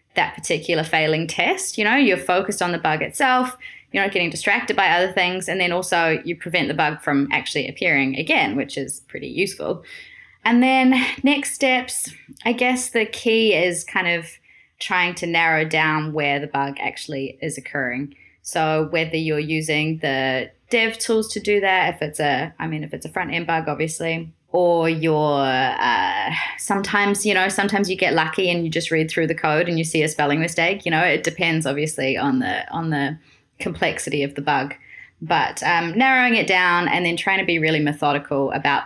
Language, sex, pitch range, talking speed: English, female, 150-185 Hz, 195 wpm